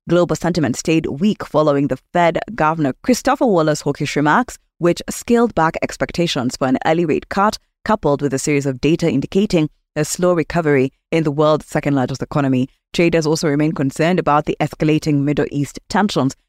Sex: female